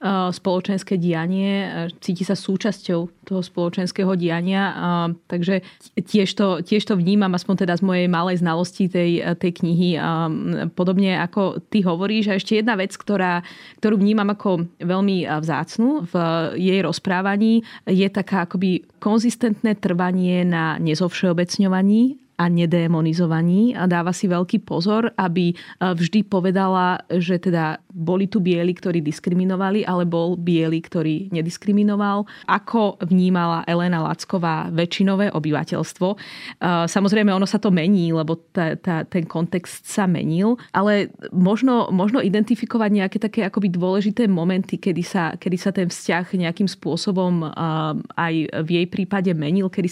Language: Slovak